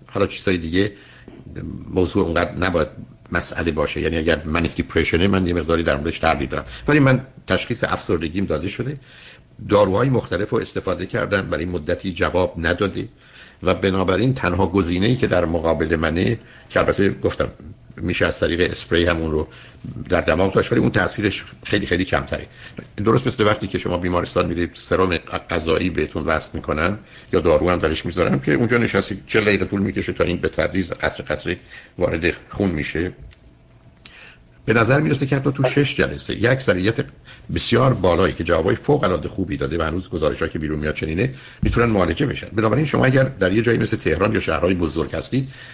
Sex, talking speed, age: male, 175 wpm, 60-79